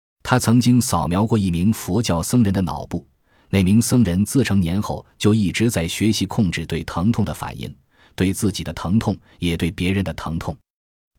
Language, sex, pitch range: Chinese, male, 85-115 Hz